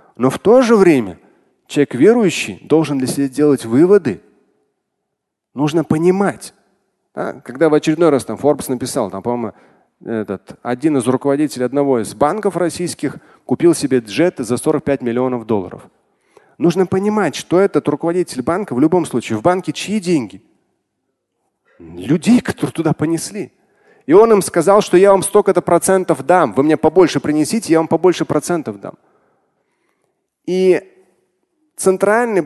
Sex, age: male, 30-49